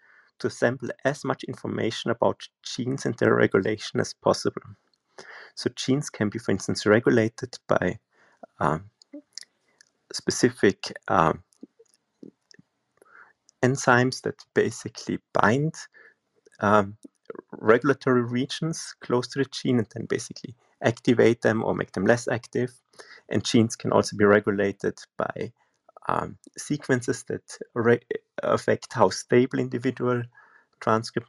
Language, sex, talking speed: English, male, 115 wpm